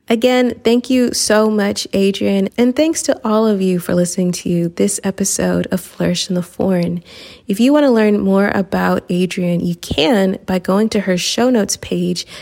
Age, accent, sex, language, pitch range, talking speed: 20-39, American, female, English, 180-240 Hz, 190 wpm